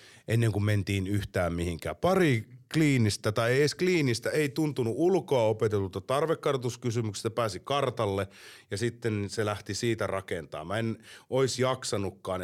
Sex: male